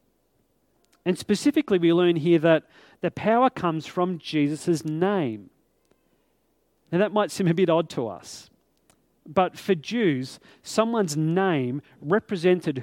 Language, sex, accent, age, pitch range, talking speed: English, male, Australian, 40-59, 160-200 Hz, 125 wpm